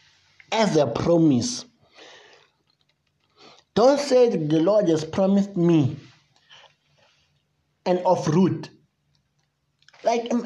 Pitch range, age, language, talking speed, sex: 150-205 Hz, 60-79, English, 80 wpm, male